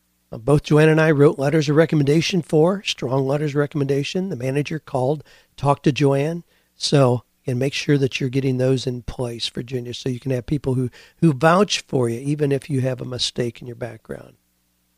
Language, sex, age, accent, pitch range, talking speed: English, male, 50-69, American, 125-150 Hz, 195 wpm